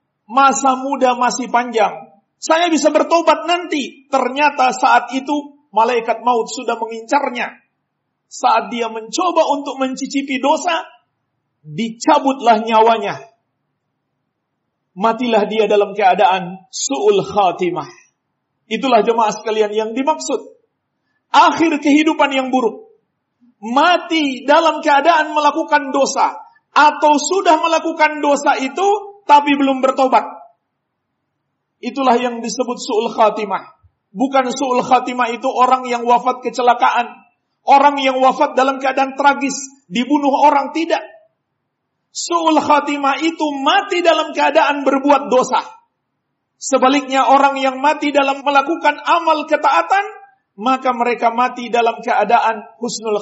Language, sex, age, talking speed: Indonesian, male, 50-69, 105 wpm